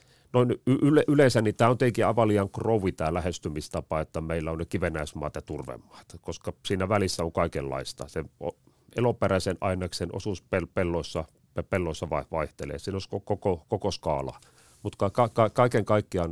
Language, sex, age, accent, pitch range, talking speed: Finnish, male, 40-59, native, 85-115 Hz, 160 wpm